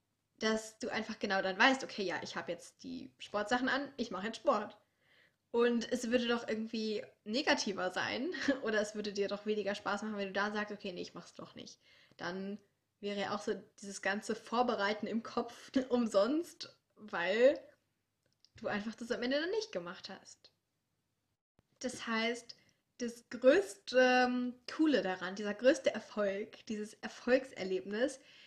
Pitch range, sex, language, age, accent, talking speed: 205-260 Hz, female, German, 20-39, German, 160 wpm